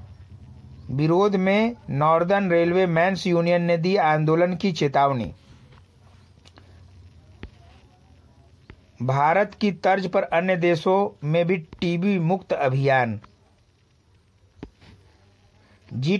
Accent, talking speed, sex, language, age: native, 85 wpm, male, Hindi, 60-79